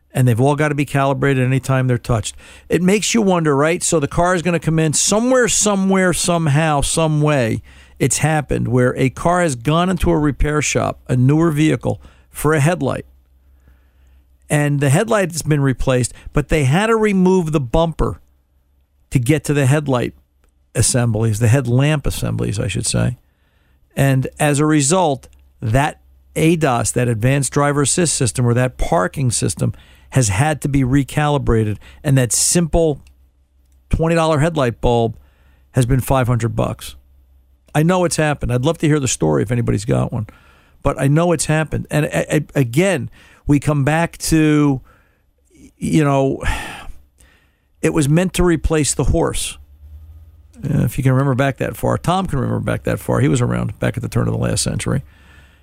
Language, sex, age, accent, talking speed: English, male, 50-69, American, 175 wpm